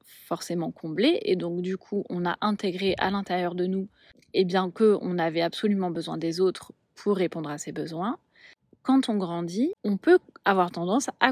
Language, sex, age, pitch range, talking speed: French, female, 30-49, 175-235 Hz, 180 wpm